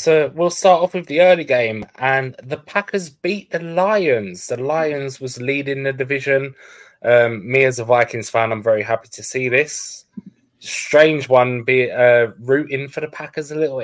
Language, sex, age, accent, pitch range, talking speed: English, male, 20-39, British, 115-150 Hz, 180 wpm